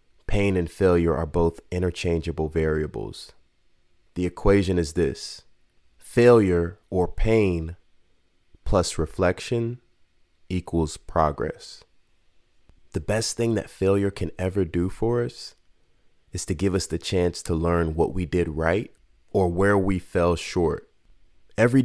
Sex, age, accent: male, 30-49, American